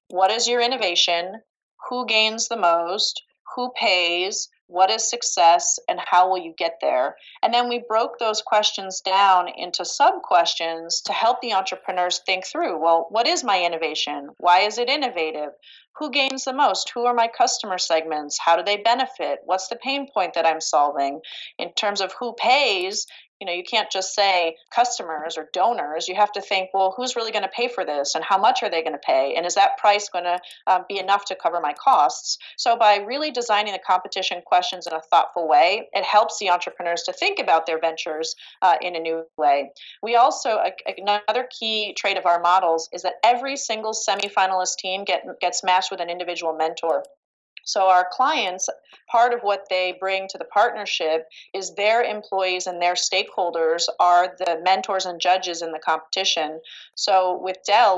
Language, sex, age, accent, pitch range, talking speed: English, female, 30-49, American, 170-215 Hz, 190 wpm